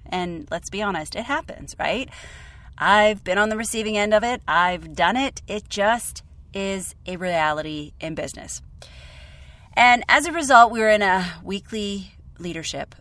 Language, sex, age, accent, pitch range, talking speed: English, female, 30-49, American, 165-220 Hz, 160 wpm